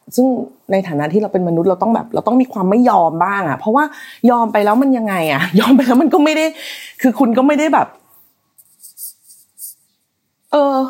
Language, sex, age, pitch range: Thai, female, 30-49, 170-265 Hz